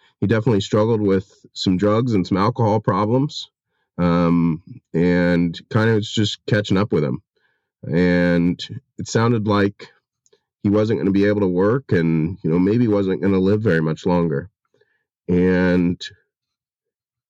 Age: 30-49